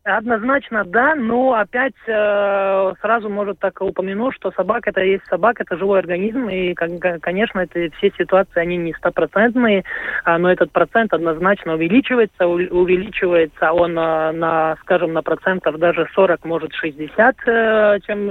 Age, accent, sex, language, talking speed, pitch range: 20-39, native, male, Russian, 140 wpm, 165-195 Hz